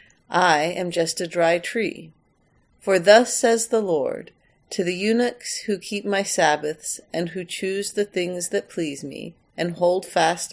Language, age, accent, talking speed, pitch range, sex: English, 40-59, American, 165 wpm, 170-200 Hz, female